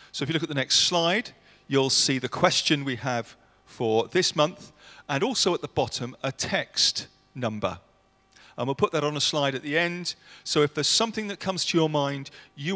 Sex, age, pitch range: male, 40-59, 120-155 Hz